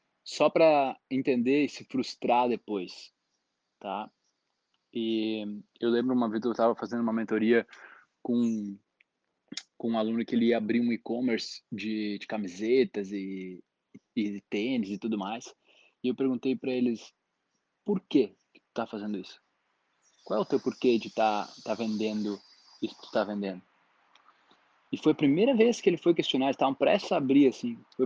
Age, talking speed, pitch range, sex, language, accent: 20-39, 165 wpm, 115-150 Hz, male, Portuguese, Brazilian